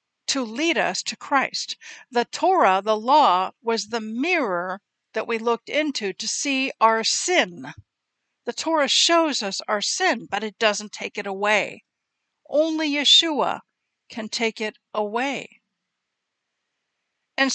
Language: English